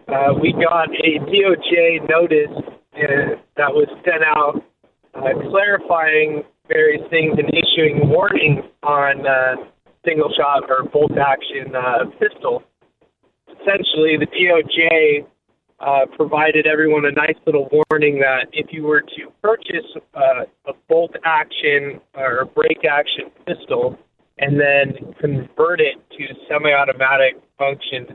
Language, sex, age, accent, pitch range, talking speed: English, male, 30-49, American, 140-165 Hz, 115 wpm